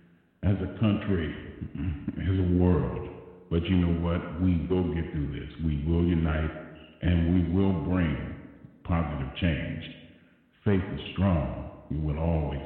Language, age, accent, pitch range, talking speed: English, 50-69, American, 75-95 Hz, 140 wpm